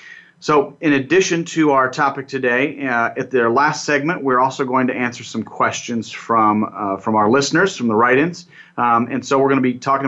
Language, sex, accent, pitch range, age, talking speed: English, male, American, 120-145 Hz, 30-49, 210 wpm